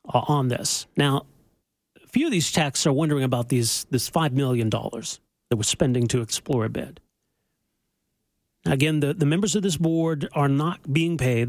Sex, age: male, 40-59